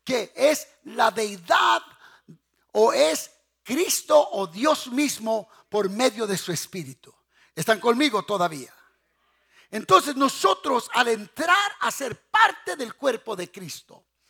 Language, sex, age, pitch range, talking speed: English, male, 50-69, 180-275 Hz, 120 wpm